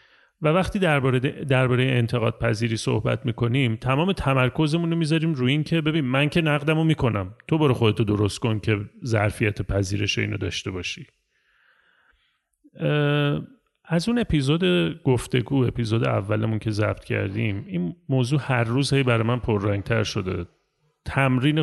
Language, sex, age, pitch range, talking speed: Persian, male, 30-49, 110-150 Hz, 135 wpm